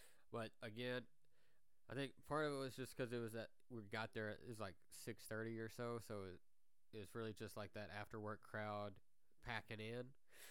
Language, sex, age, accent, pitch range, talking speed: English, male, 20-39, American, 100-120 Hz, 195 wpm